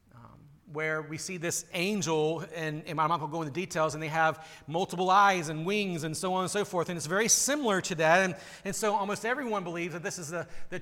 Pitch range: 155-195 Hz